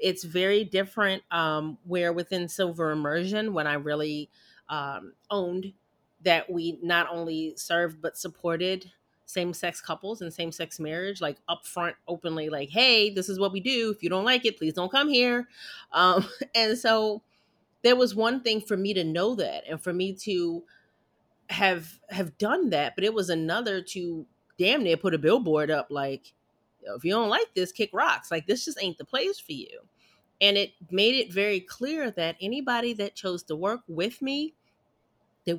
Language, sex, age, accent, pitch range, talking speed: English, female, 30-49, American, 170-215 Hz, 180 wpm